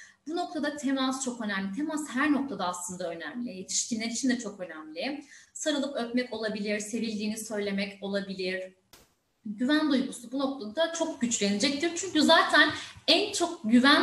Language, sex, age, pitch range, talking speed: Turkish, female, 30-49, 200-285 Hz, 135 wpm